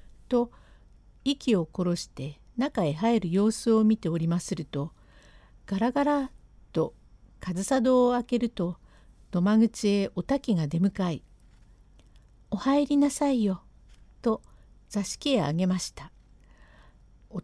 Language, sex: Japanese, female